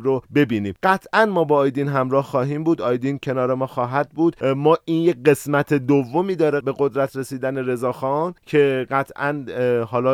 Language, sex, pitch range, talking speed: Persian, male, 125-150 Hz, 160 wpm